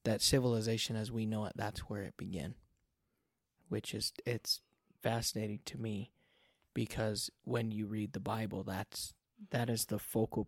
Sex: male